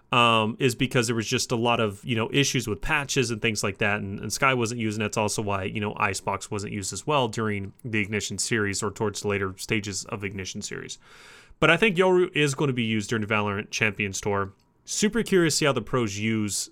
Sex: male